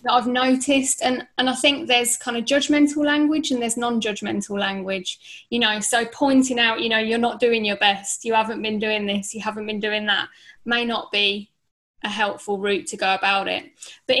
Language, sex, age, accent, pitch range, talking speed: English, female, 10-29, British, 210-255 Hz, 205 wpm